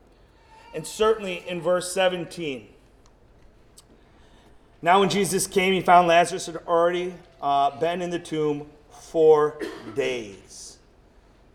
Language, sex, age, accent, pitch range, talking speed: English, male, 40-59, American, 135-170 Hz, 110 wpm